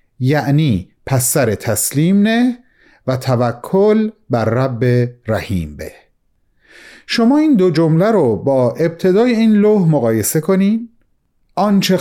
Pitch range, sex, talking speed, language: 130-175 Hz, male, 110 wpm, Persian